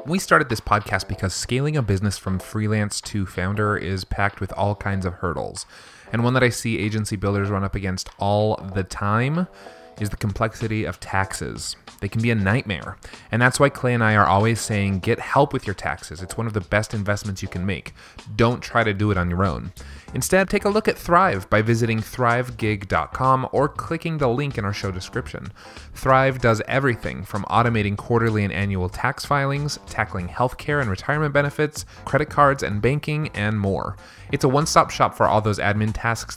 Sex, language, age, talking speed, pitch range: male, English, 30-49, 200 wpm, 100-130 Hz